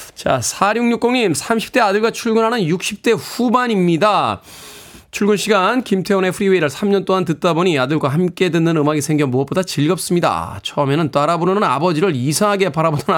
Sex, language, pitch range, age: male, Korean, 135-185 Hz, 20-39